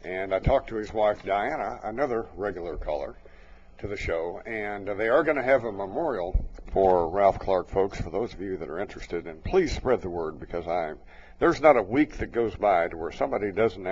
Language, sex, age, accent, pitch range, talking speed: English, male, 60-79, American, 95-130 Hz, 215 wpm